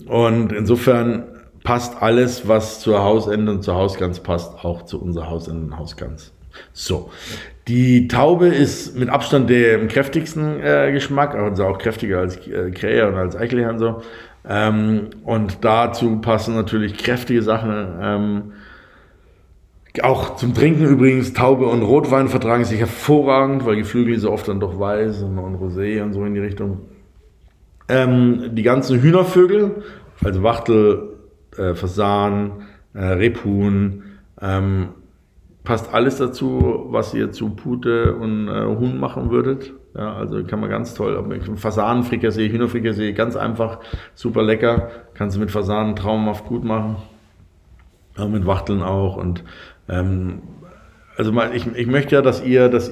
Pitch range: 100-120 Hz